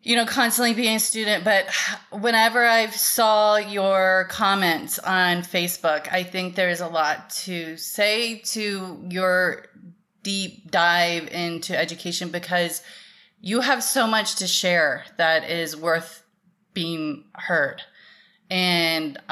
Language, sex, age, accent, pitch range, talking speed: English, female, 30-49, American, 170-210 Hz, 125 wpm